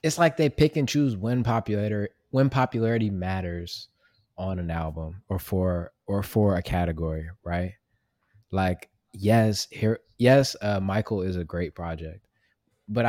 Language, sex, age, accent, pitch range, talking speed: English, male, 20-39, American, 95-120 Hz, 145 wpm